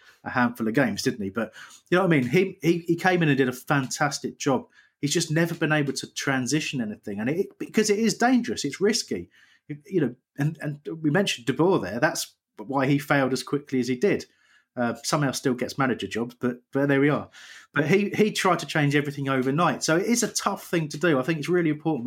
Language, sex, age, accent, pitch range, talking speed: English, male, 30-49, British, 125-165 Hz, 235 wpm